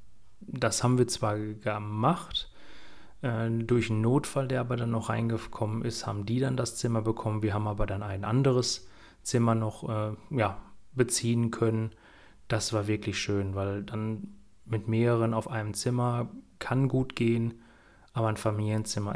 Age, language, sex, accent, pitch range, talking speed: 30-49, German, male, German, 105-115 Hz, 145 wpm